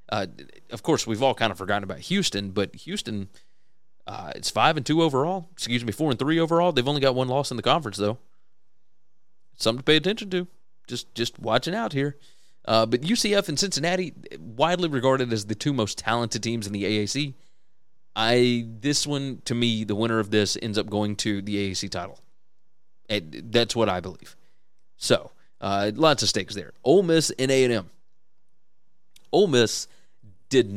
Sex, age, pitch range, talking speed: male, 30-49, 105-135 Hz, 185 wpm